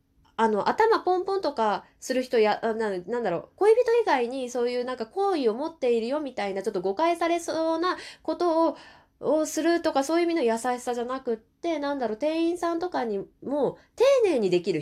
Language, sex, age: Japanese, female, 20-39